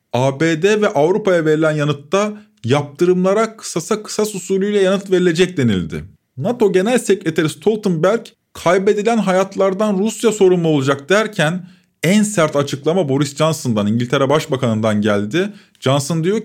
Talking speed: 115 wpm